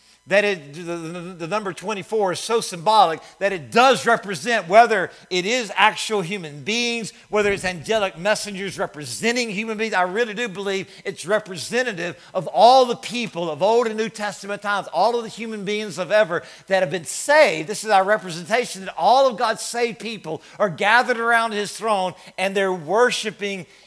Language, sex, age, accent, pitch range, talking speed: English, male, 50-69, American, 170-220 Hz, 175 wpm